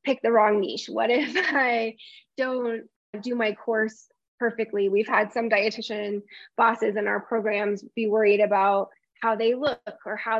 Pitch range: 200-235 Hz